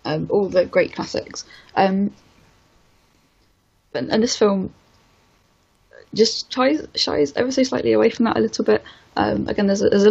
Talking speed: 155 wpm